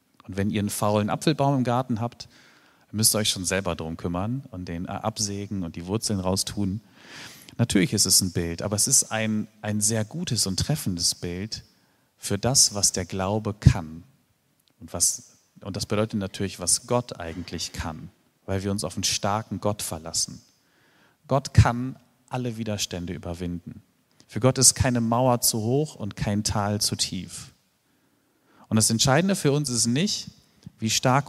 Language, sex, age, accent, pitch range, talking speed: German, male, 40-59, German, 95-125 Hz, 165 wpm